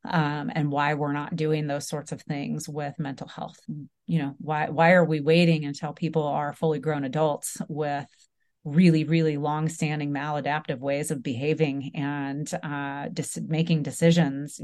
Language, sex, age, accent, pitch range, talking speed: English, female, 30-49, American, 150-170 Hz, 165 wpm